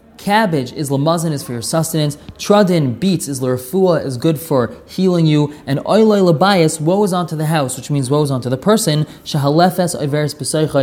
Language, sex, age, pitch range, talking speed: English, male, 20-39, 145-185 Hz, 170 wpm